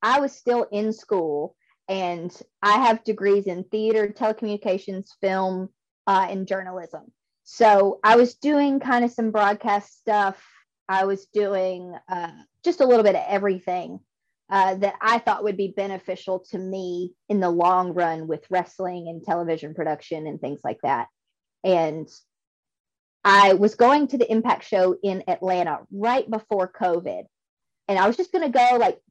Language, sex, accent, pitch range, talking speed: English, female, American, 180-230 Hz, 160 wpm